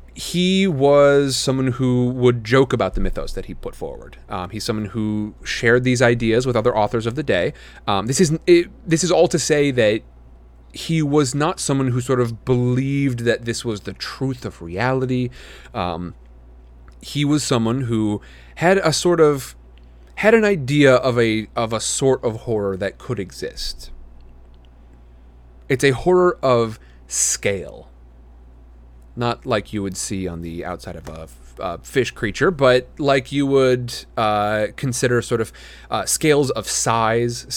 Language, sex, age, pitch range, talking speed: English, male, 30-49, 85-135 Hz, 165 wpm